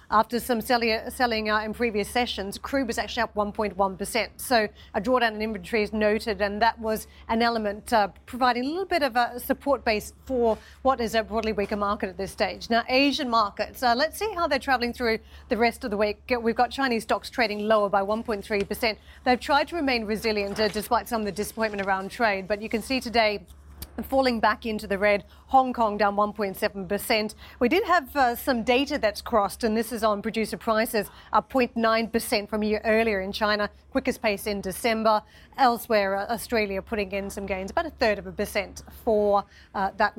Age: 40-59